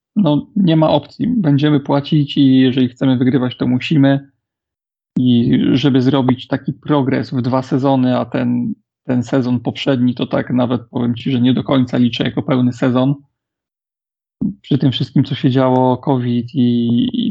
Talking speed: 165 wpm